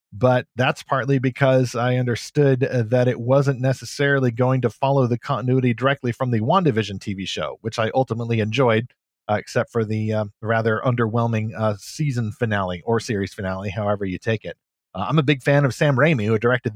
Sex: male